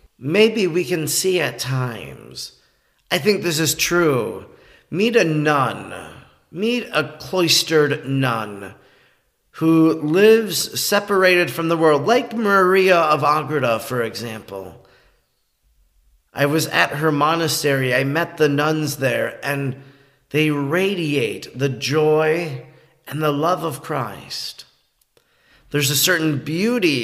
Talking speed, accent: 120 wpm, American